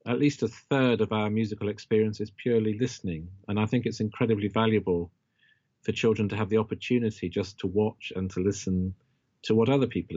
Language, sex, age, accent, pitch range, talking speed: English, male, 40-59, British, 100-120 Hz, 195 wpm